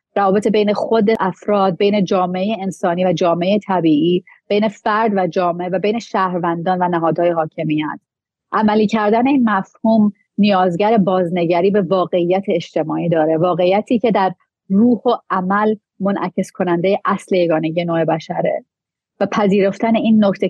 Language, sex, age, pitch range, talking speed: Persian, female, 30-49, 175-215 Hz, 135 wpm